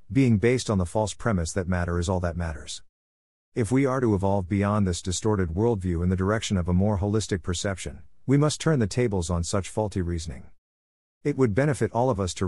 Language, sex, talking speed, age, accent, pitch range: English, male, 215 wpm, 50-69, American, 90-115 Hz